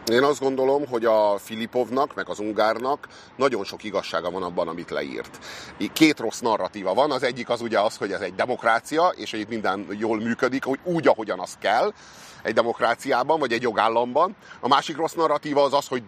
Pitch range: 110-150 Hz